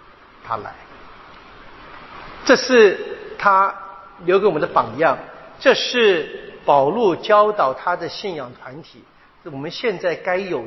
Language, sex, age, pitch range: Chinese, male, 50-69, 135-195 Hz